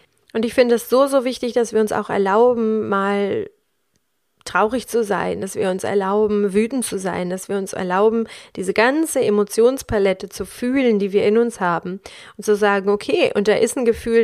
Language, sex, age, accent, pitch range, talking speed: German, female, 30-49, German, 200-235 Hz, 195 wpm